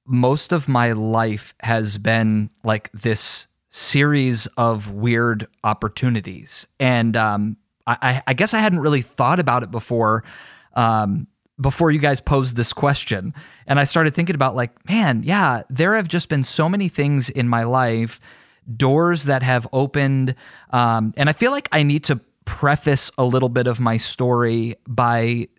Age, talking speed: 20-39, 160 wpm